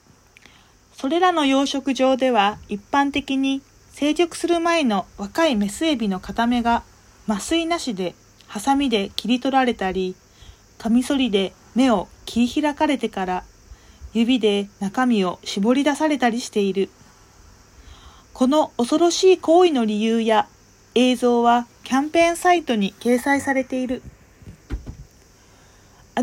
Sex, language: female, Japanese